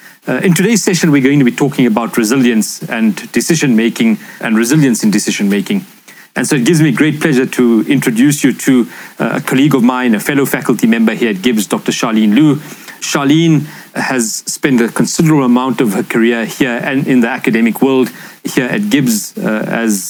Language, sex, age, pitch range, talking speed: English, male, 40-59, 125-185 Hz, 190 wpm